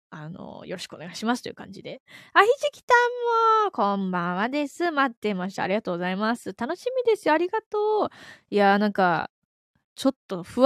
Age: 20-39